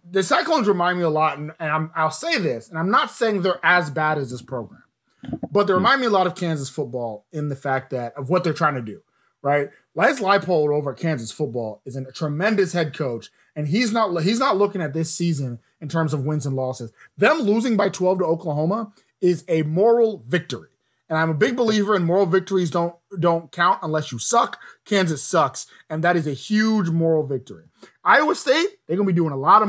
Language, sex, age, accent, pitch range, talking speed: English, male, 30-49, American, 130-180 Hz, 220 wpm